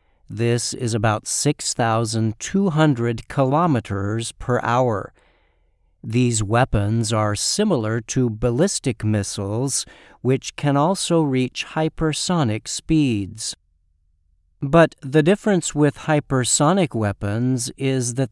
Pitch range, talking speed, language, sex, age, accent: 110-145 Hz, 90 wpm, English, male, 50-69, American